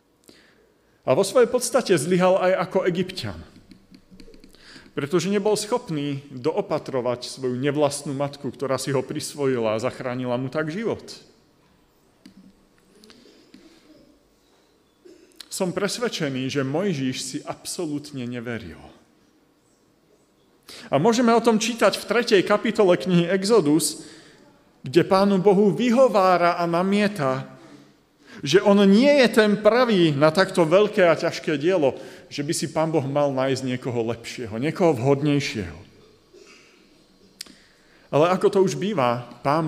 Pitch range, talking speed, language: 135-200 Hz, 115 wpm, Slovak